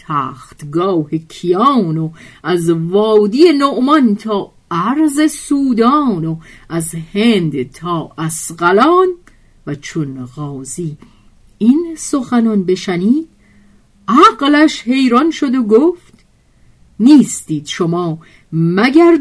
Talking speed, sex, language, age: 85 wpm, female, Persian, 50-69